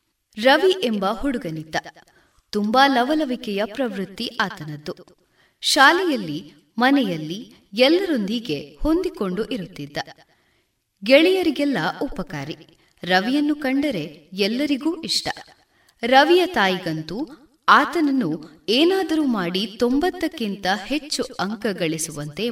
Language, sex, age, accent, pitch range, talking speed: Kannada, female, 30-49, native, 185-290 Hz, 70 wpm